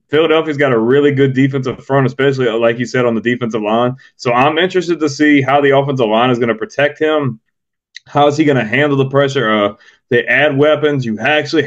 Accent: American